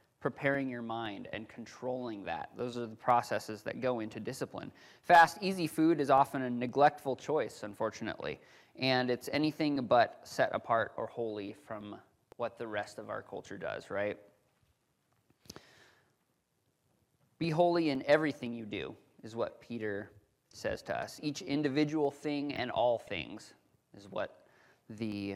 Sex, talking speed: male, 145 wpm